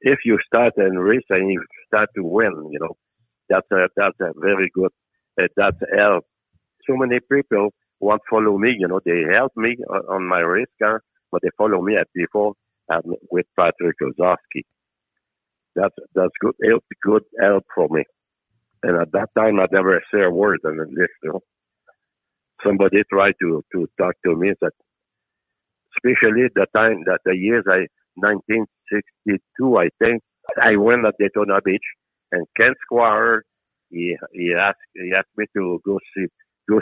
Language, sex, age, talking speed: English, male, 60-79, 170 wpm